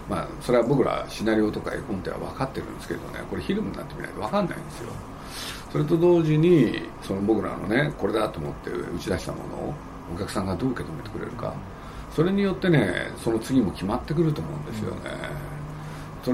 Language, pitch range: Japanese, 90-155 Hz